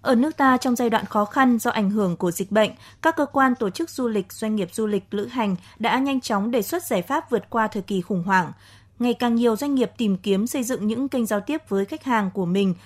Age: 20-39